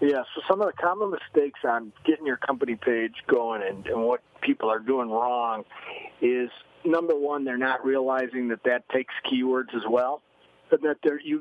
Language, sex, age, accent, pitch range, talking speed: English, male, 50-69, American, 130-175 Hz, 185 wpm